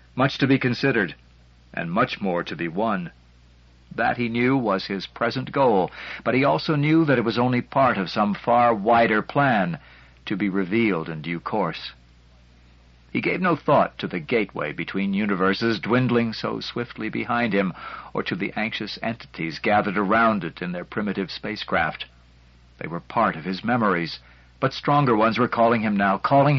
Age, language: 60-79, English